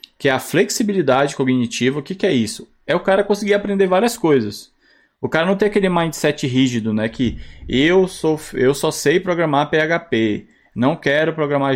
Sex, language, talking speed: male, Portuguese, 185 wpm